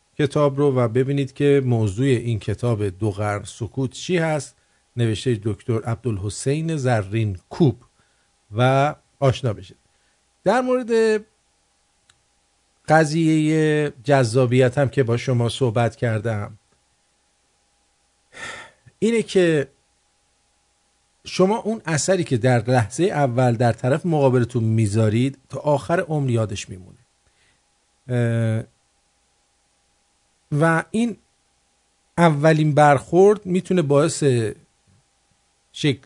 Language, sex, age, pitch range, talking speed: English, male, 50-69, 115-155 Hz, 90 wpm